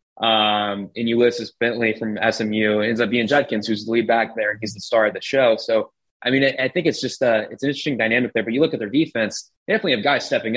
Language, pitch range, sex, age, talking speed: English, 110-120 Hz, male, 20-39, 260 wpm